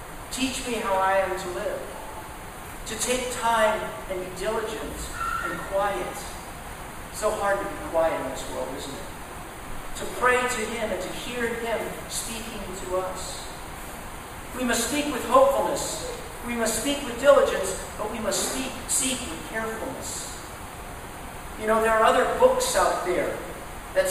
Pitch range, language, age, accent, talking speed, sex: 210-255 Hz, English, 50-69, American, 150 wpm, male